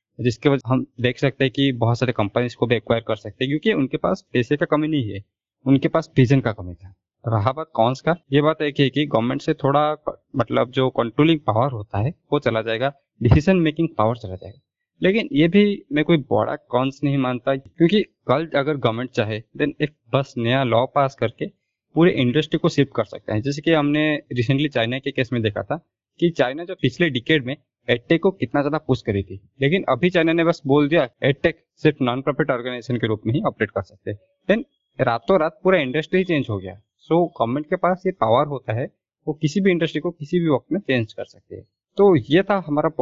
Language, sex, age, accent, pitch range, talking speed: Hindi, male, 20-39, native, 120-155 Hz, 120 wpm